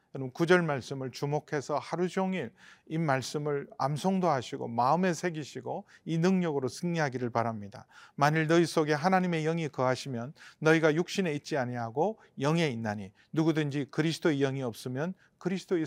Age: 40-59